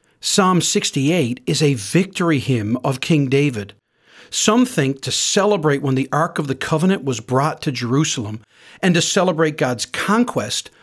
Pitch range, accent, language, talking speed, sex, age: 140-185 Hz, American, English, 155 wpm, male, 40-59